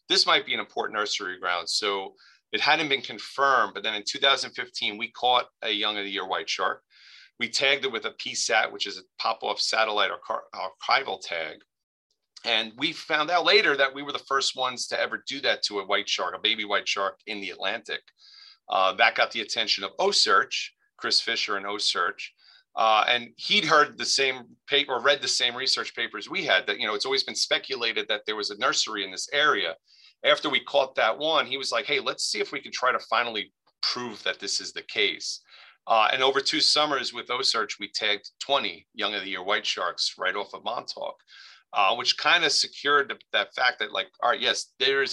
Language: English